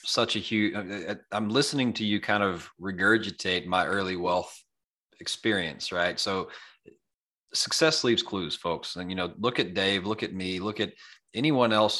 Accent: American